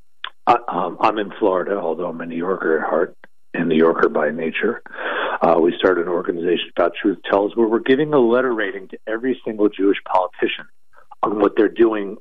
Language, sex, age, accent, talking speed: English, male, 50-69, American, 190 wpm